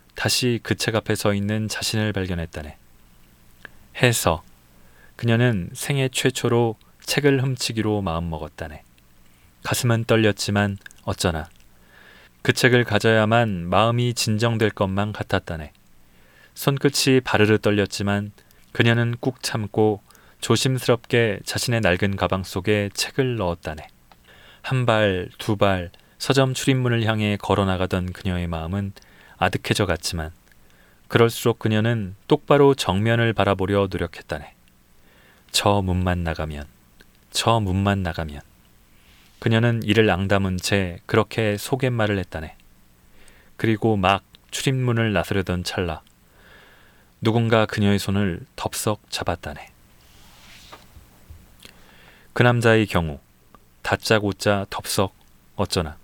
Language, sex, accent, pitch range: Korean, male, native, 85-115 Hz